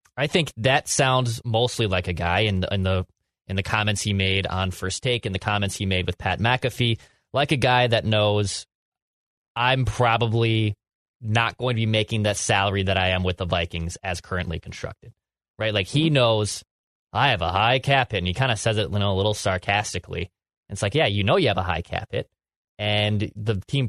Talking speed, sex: 220 wpm, male